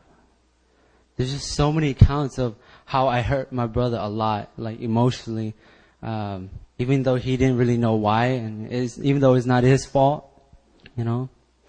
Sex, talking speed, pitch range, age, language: male, 180 wpm, 110-130 Hz, 20-39, English